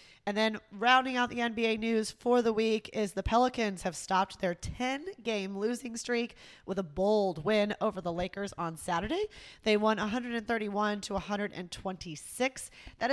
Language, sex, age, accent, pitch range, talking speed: English, female, 20-39, American, 190-230 Hz, 150 wpm